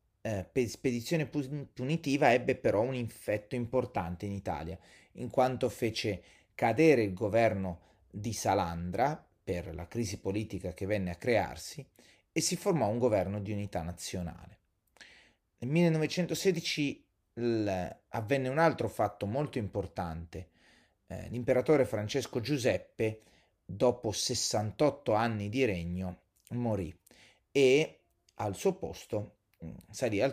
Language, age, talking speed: Italian, 30-49, 115 wpm